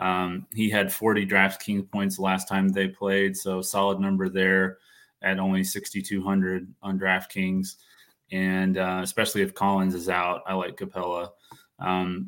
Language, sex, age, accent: English, male, 20-39, American